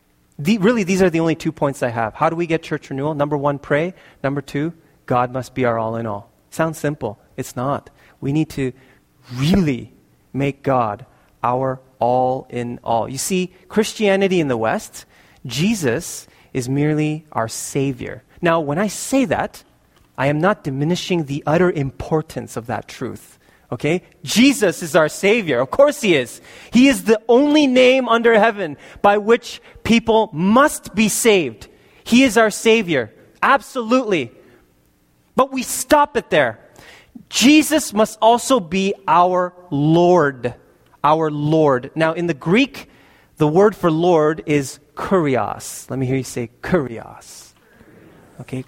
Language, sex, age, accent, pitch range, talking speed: English, male, 30-49, American, 130-215 Hz, 155 wpm